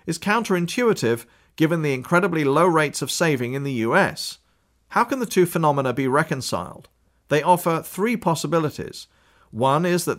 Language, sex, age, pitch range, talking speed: English, male, 40-59, 130-170 Hz, 155 wpm